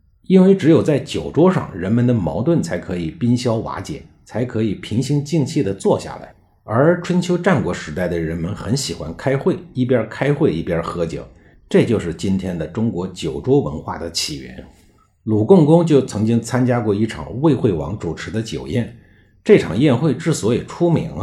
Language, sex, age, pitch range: Chinese, male, 50-69, 90-135 Hz